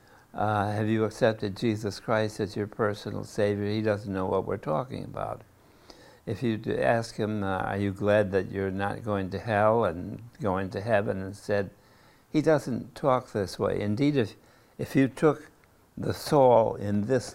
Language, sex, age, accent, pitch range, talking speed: English, male, 60-79, American, 100-120 Hz, 175 wpm